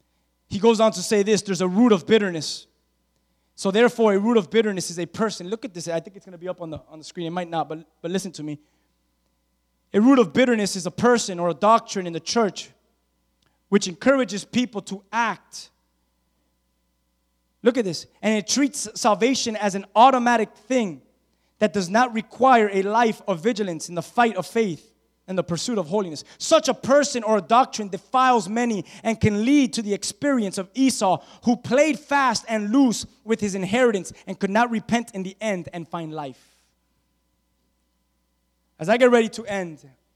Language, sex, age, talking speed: English, male, 20-39, 195 wpm